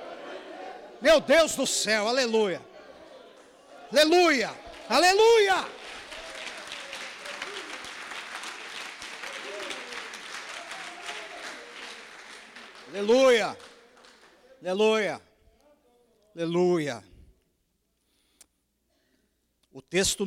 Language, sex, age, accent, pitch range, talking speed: Portuguese, male, 50-69, Brazilian, 175-255 Hz, 40 wpm